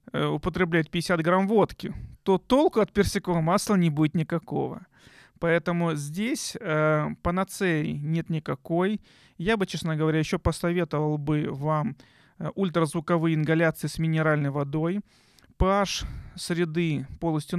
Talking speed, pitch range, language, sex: 115 wpm, 150-175 Hz, Russian, male